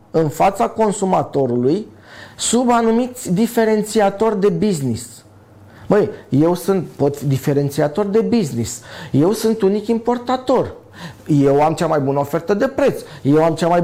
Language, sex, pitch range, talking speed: Romanian, male, 140-205 Hz, 135 wpm